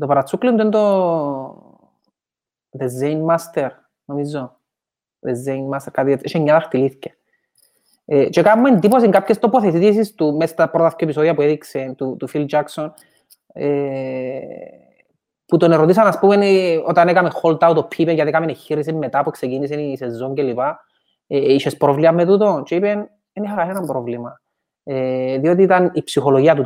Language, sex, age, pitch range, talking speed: Greek, male, 30-49, 145-200 Hz, 100 wpm